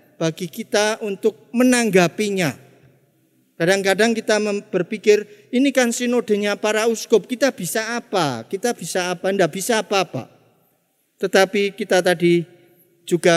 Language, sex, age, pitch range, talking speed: Indonesian, male, 50-69, 170-220 Hz, 110 wpm